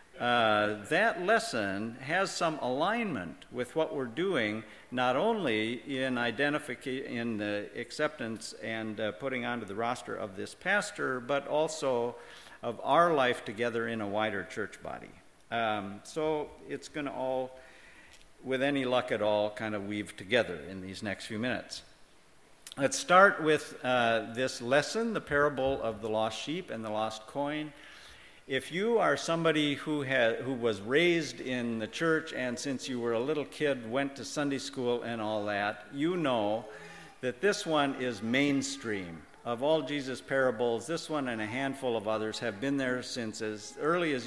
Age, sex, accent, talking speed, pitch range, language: 50-69, male, American, 165 wpm, 110-145 Hz, English